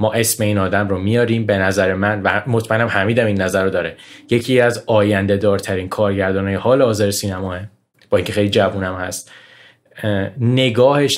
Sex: male